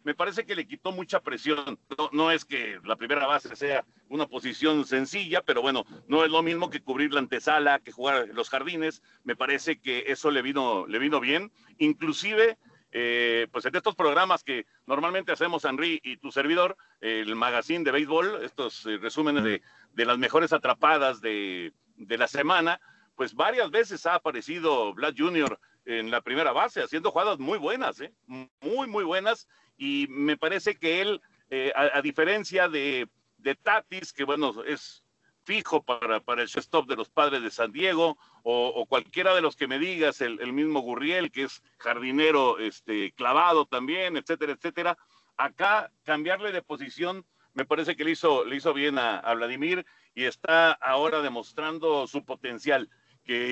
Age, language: 50-69, Spanish